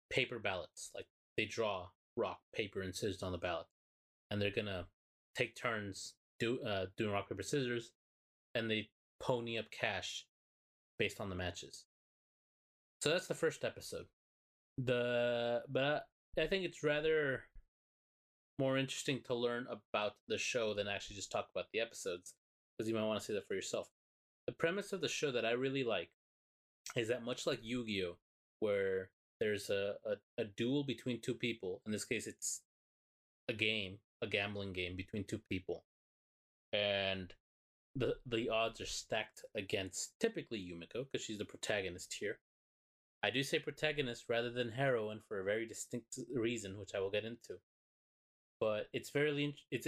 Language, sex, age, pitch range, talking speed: English, male, 20-39, 95-130 Hz, 165 wpm